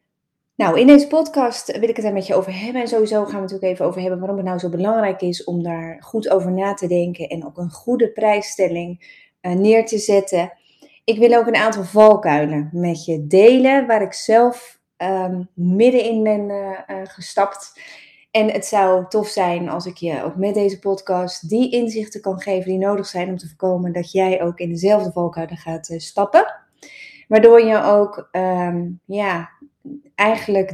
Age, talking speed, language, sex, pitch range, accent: 30-49, 190 wpm, Dutch, female, 180-215 Hz, Dutch